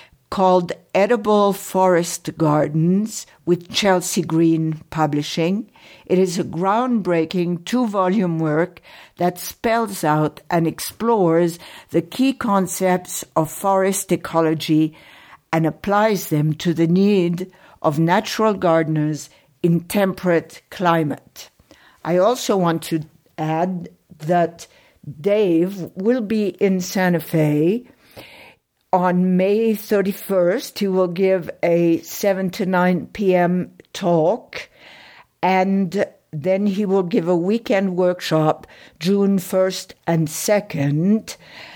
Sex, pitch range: female, 165-195 Hz